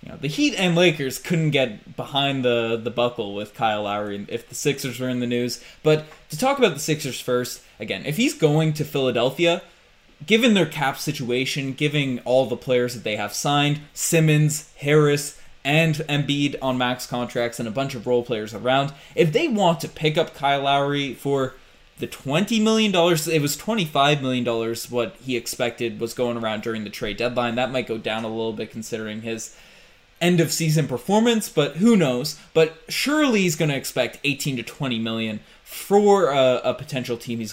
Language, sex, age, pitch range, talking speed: English, male, 20-39, 120-160 Hz, 190 wpm